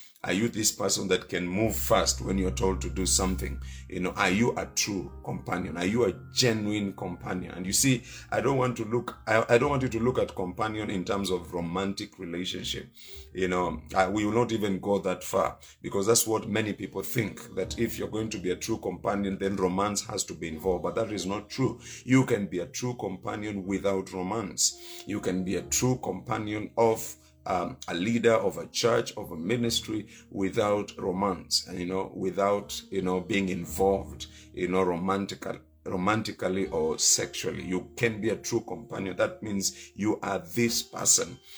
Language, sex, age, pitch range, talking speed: English, male, 50-69, 95-115 Hz, 195 wpm